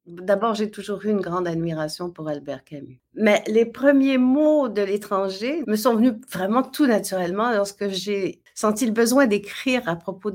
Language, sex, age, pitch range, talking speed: French, female, 60-79, 185-230 Hz, 175 wpm